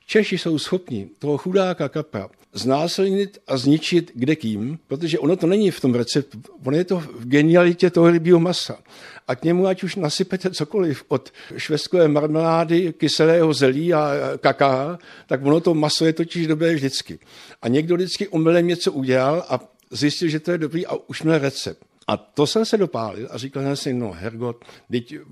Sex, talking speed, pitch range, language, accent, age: male, 180 wpm, 135-175 Hz, Czech, native, 60-79